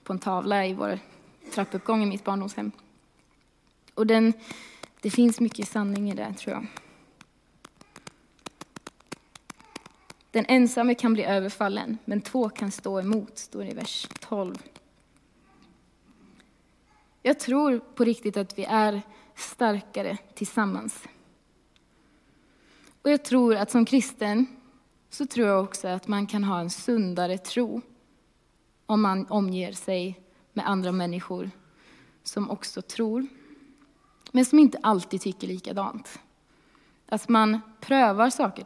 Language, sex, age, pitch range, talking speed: Swedish, female, 20-39, 195-240 Hz, 120 wpm